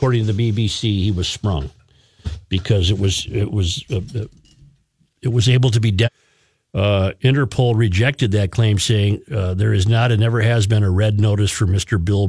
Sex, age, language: male, 50-69, English